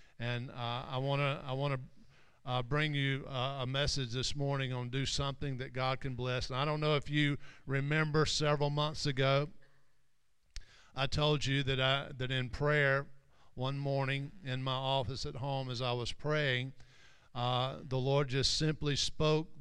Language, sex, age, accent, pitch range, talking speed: English, male, 50-69, American, 130-145 Hz, 175 wpm